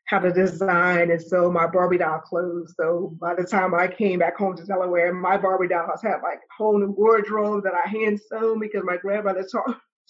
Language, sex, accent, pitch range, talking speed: English, female, American, 170-215 Hz, 225 wpm